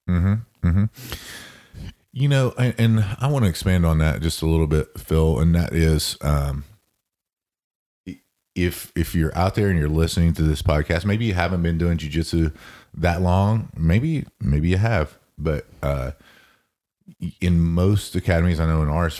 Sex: male